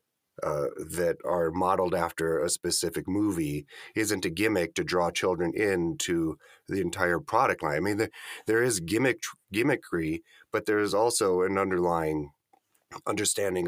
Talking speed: 145 wpm